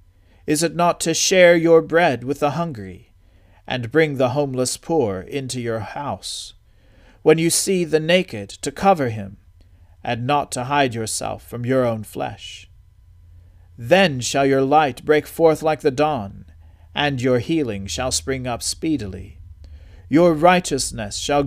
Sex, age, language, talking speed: male, 40-59, English, 150 wpm